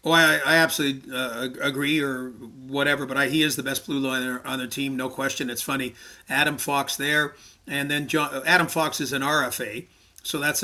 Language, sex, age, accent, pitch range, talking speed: English, male, 40-59, American, 135-155 Hz, 205 wpm